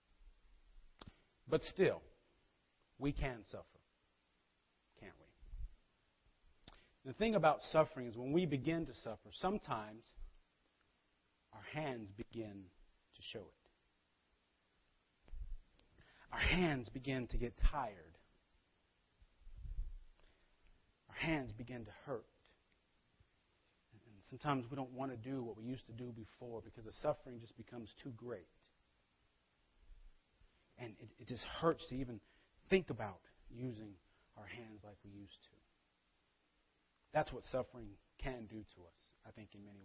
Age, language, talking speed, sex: 40-59, English, 125 wpm, male